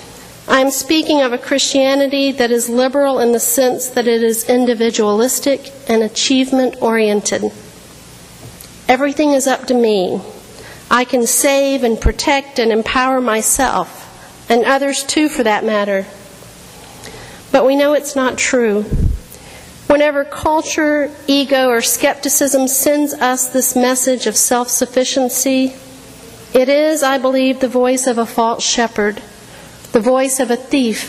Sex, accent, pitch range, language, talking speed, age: female, American, 230-270 Hz, English, 135 wpm, 50-69